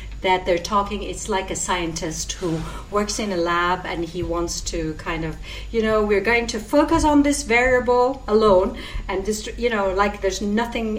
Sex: female